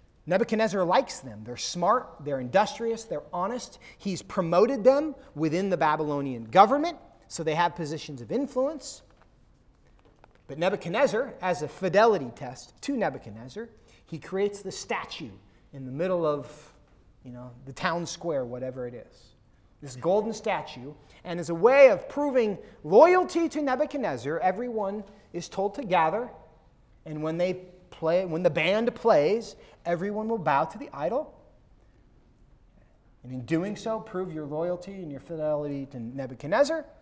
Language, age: English, 30-49